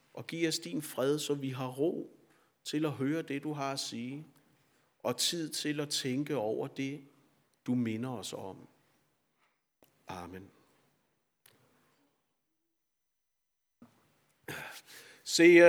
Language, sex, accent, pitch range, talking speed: Danish, male, native, 160-220 Hz, 115 wpm